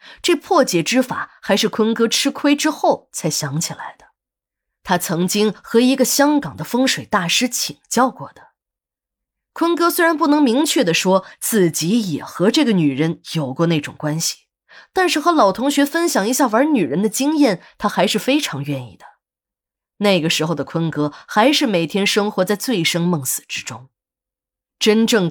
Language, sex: Chinese, female